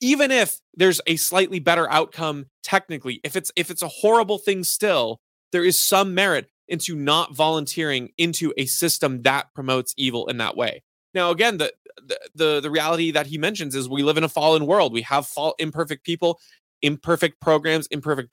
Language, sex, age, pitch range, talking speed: English, male, 20-39, 140-185 Hz, 185 wpm